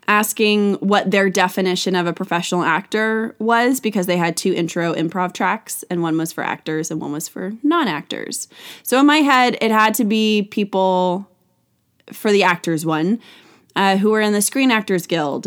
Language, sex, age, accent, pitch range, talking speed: English, female, 20-39, American, 170-225 Hz, 180 wpm